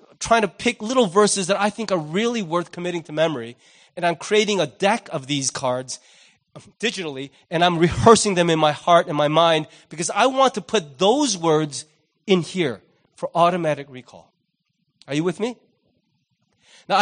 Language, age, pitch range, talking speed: English, 30-49, 160-205 Hz, 175 wpm